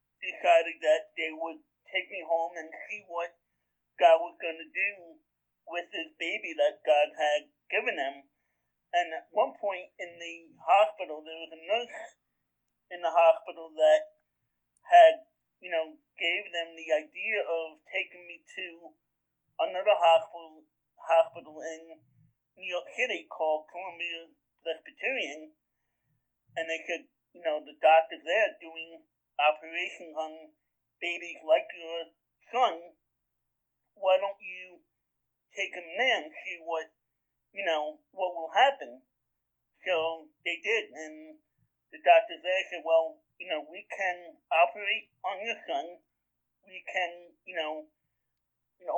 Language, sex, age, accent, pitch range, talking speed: English, male, 50-69, American, 160-190 Hz, 135 wpm